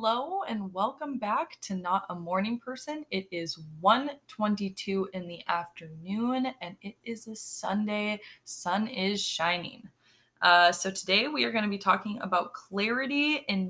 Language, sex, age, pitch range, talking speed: English, female, 20-39, 180-230 Hz, 155 wpm